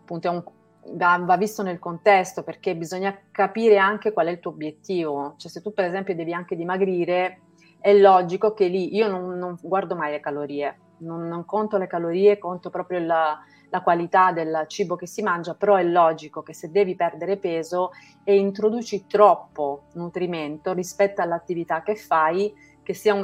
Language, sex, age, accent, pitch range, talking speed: Italian, female, 30-49, native, 170-200 Hz, 175 wpm